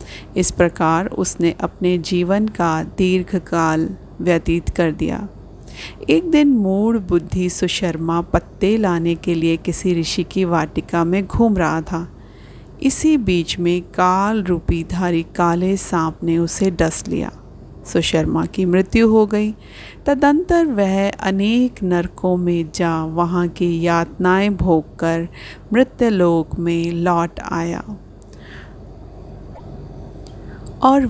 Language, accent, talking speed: Hindi, native, 115 wpm